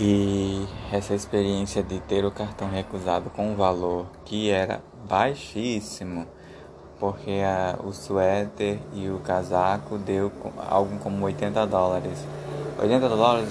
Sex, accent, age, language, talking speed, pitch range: male, Brazilian, 20-39, Portuguese, 125 wpm, 95-105 Hz